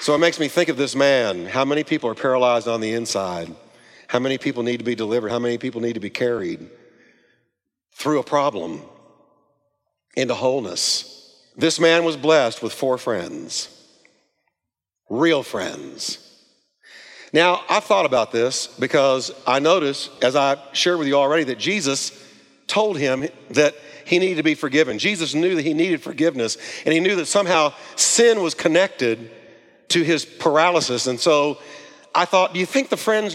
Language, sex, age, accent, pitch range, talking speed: English, male, 50-69, American, 140-215 Hz, 170 wpm